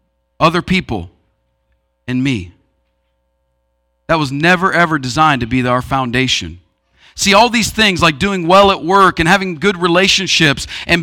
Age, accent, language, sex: 40-59, American, English, male